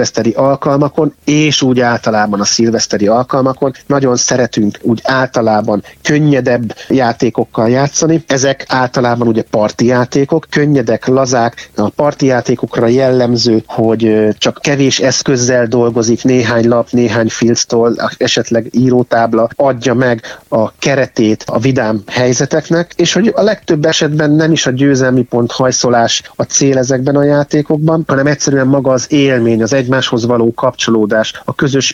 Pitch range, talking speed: 115-140 Hz, 135 wpm